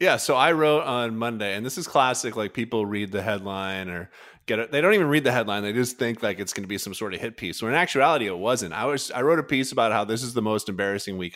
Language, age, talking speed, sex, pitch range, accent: English, 30-49, 295 wpm, male, 105-150 Hz, American